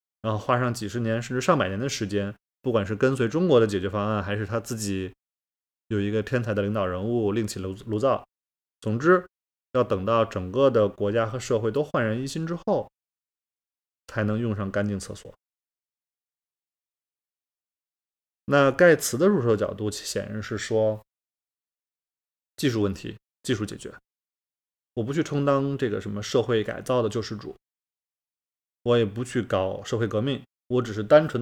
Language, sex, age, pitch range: Chinese, male, 20-39, 100-125 Hz